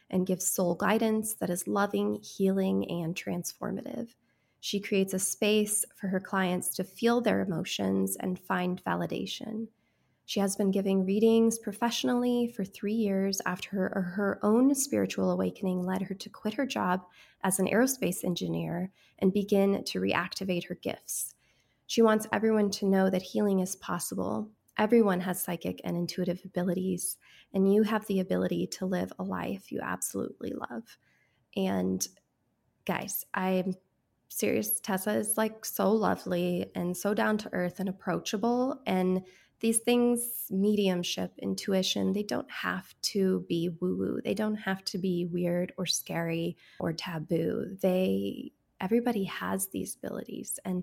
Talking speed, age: 150 wpm, 20-39